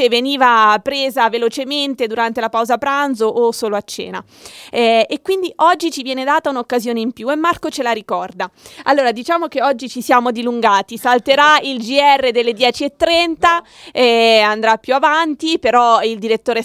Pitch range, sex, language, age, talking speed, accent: 230-275 Hz, female, Italian, 20-39, 160 wpm, native